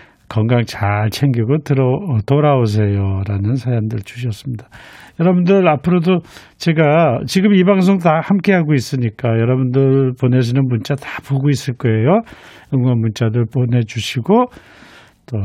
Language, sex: Korean, male